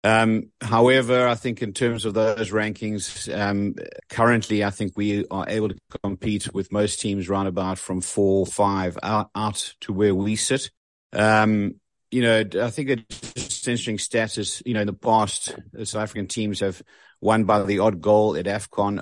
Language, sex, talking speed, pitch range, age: English, male, 175 wpm, 100-115 Hz, 50-69